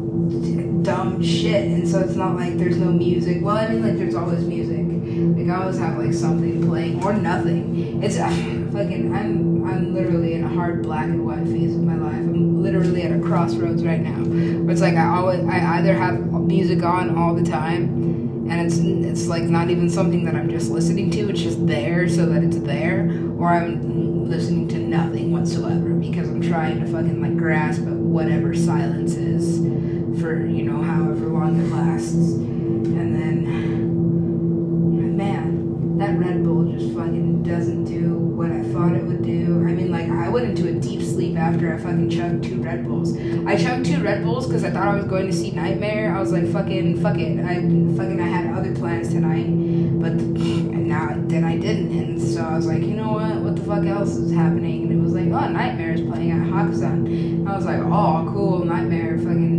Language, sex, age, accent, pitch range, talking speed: English, female, 20-39, American, 165-170 Hz, 200 wpm